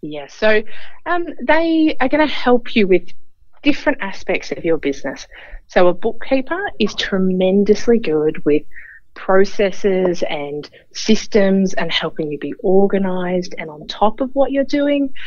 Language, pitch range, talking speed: English, 160-230 Hz, 145 wpm